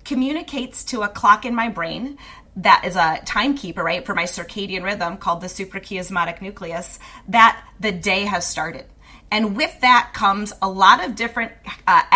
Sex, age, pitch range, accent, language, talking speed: female, 30-49, 185-245 Hz, American, English, 170 wpm